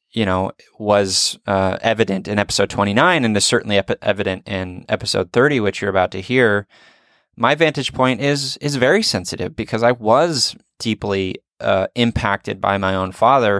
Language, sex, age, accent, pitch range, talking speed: English, male, 20-39, American, 95-120 Hz, 170 wpm